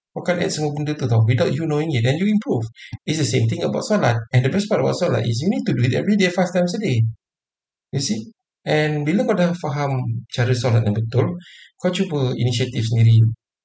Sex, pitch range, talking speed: male, 115-160 Hz, 225 wpm